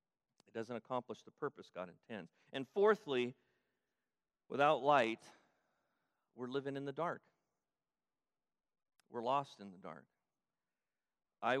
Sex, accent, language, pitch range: male, American, English, 105-130 Hz